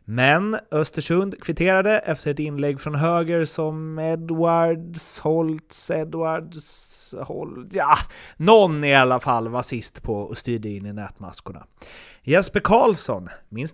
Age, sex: 30-49, male